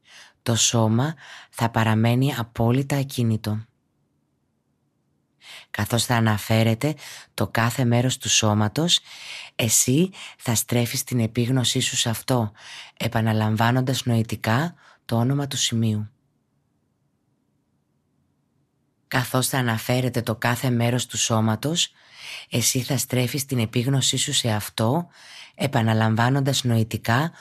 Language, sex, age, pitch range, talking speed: Greek, female, 20-39, 110-135 Hz, 95 wpm